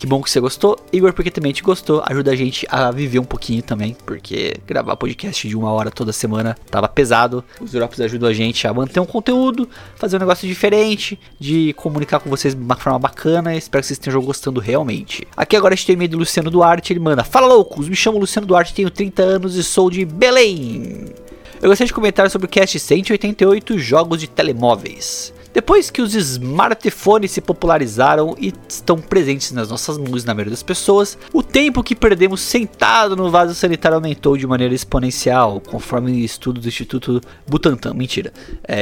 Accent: Brazilian